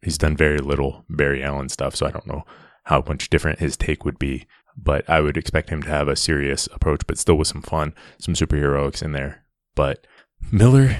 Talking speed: 215 wpm